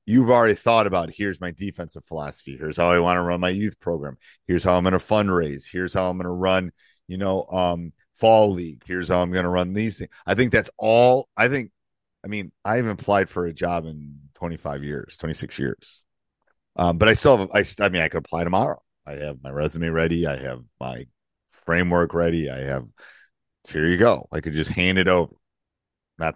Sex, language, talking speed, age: male, English, 215 wpm, 40-59